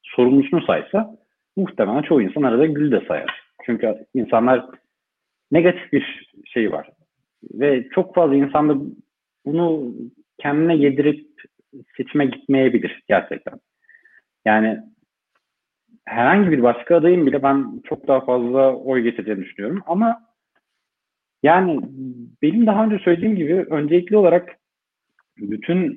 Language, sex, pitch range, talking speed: Turkish, male, 130-185 Hz, 110 wpm